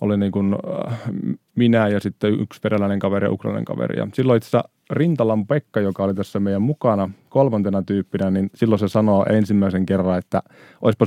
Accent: native